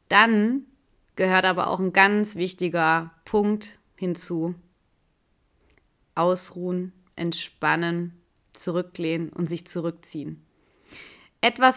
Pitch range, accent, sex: 170-195 Hz, German, female